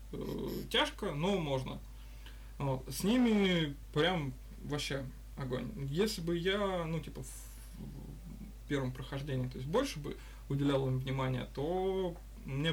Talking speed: 125 wpm